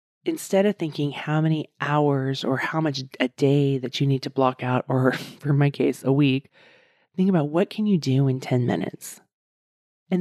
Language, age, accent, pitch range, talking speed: English, 30-49, American, 140-190 Hz, 195 wpm